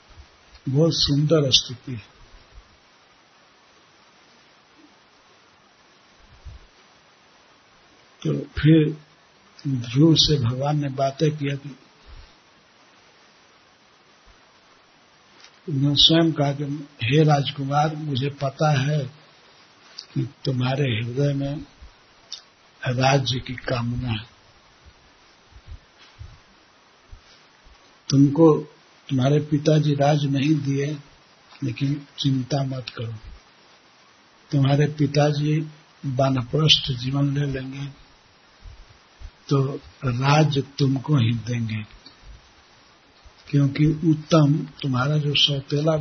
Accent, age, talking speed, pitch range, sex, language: native, 60-79, 70 wpm, 130-150 Hz, male, Hindi